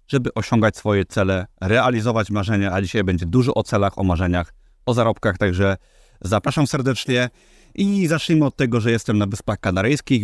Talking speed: 165 wpm